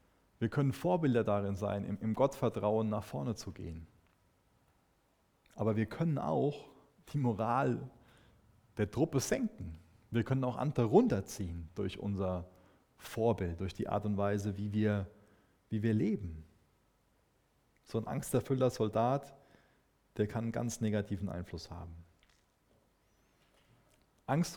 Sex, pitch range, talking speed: male, 100-125 Hz, 120 wpm